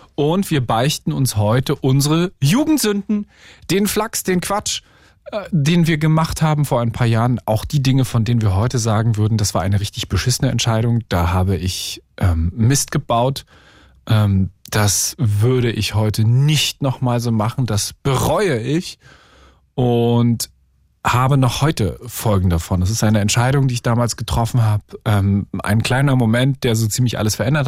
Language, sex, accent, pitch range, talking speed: German, male, German, 110-140 Hz, 165 wpm